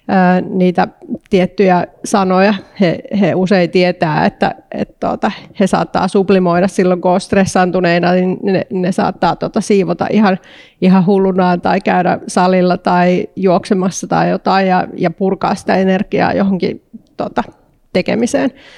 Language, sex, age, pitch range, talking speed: Finnish, female, 30-49, 180-200 Hz, 130 wpm